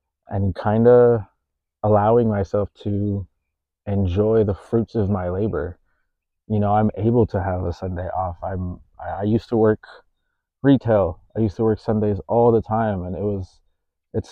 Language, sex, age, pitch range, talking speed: English, male, 20-39, 90-110 Hz, 170 wpm